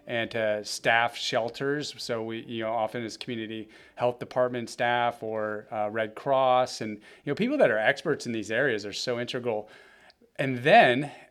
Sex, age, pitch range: male, 30-49, 115-140 Hz